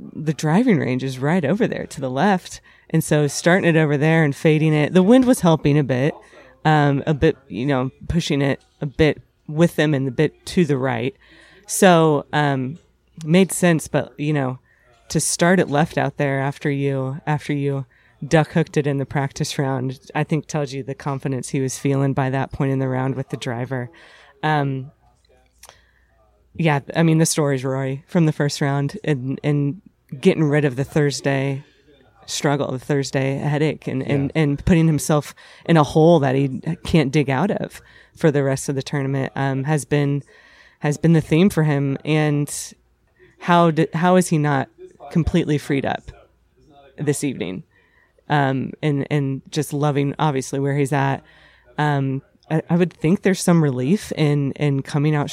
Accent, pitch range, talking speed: American, 135-160 Hz, 185 wpm